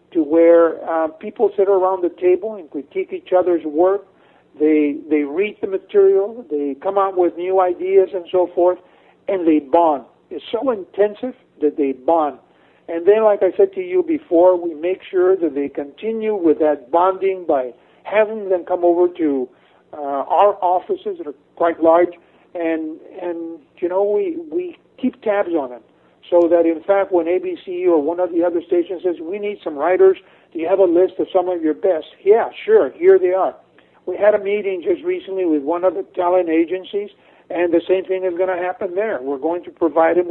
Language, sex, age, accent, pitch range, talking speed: English, male, 50-69, American, 165-205 Hz, 200 wpm